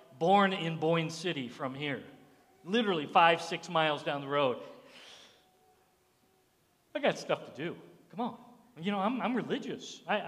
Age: 50-69